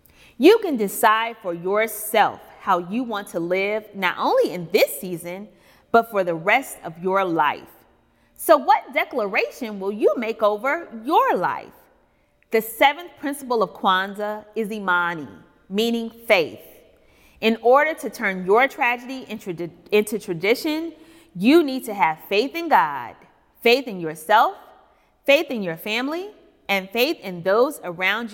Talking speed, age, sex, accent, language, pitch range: 140 wpm, 30-49, female, American, English, 195-285 Hz